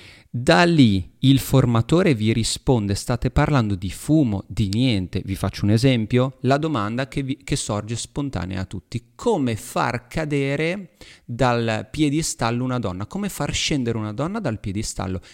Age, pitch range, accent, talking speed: 40-59, 105-145 Hz, native, 150 wpm